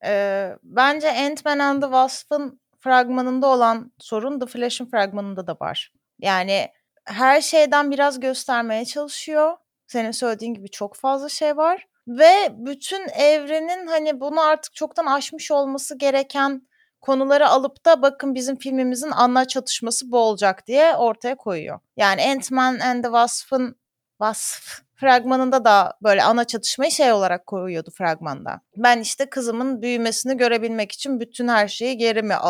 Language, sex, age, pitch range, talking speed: Turkish, female, 30-49, 210-280 Hz, 140 wpm